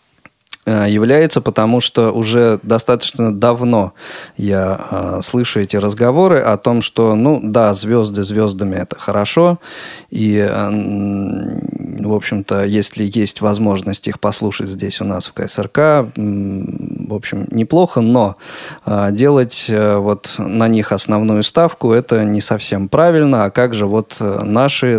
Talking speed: 125 wpm